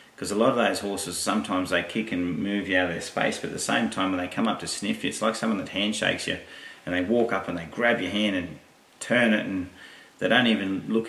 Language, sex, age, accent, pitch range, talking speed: English, male, 30-49, Australian, 90-100 Hz, 275 wpm